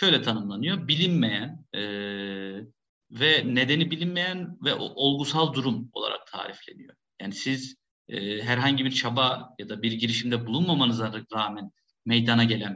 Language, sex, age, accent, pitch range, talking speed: Turkish, male, 50-69, native, 115-155 Hz, 120 wpm